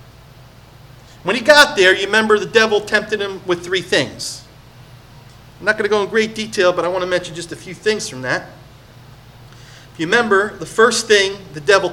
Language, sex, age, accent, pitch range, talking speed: English, male, 40-59, American, 125-200 Hz, 200 wpm